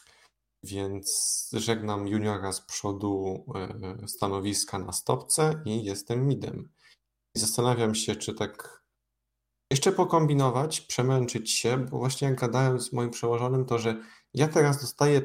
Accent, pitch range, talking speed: native, 105-130 Hz, 125 wpm